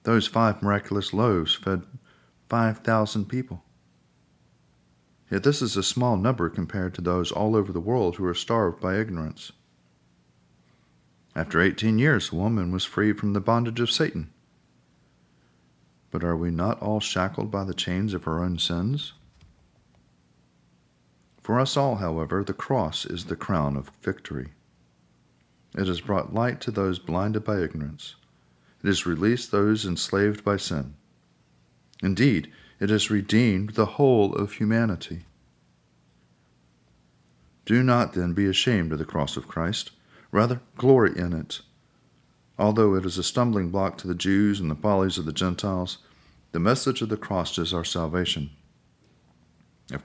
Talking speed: 150 wpm